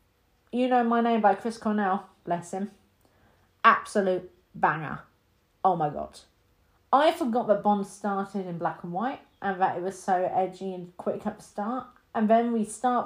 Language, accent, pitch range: English, British, 180-235 Hz